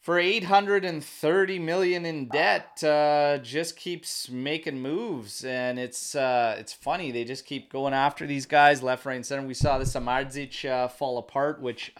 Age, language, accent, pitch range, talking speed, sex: 30-49, English, American, 120-155 Hz, 165 wpm, male